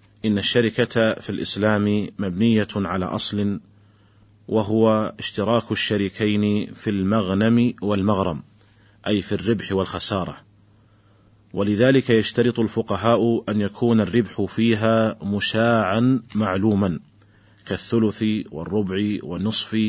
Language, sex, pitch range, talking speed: Arabic, male, 100-115 Hz, 90 wpm